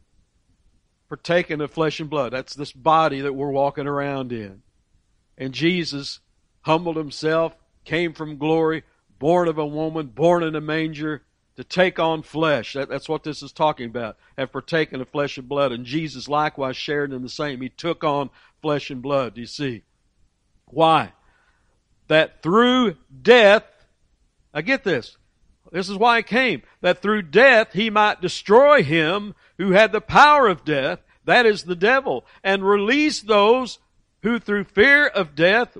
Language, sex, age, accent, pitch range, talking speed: English, male, 60-79, American, 140-215 Hz, 165 wpm